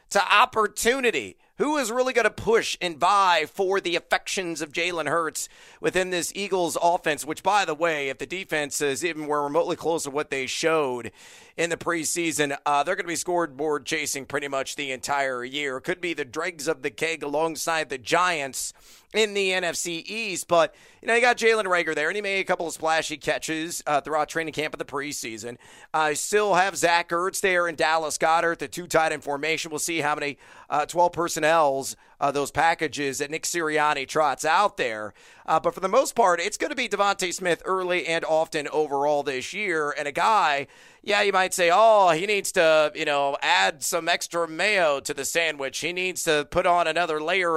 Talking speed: 205 wpm